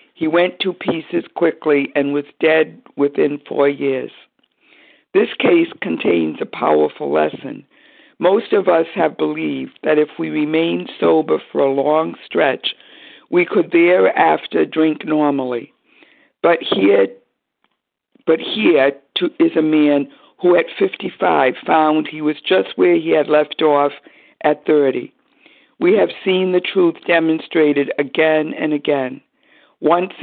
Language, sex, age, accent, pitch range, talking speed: English, female, 60-79, American, 145-170 Hz, 135 wpm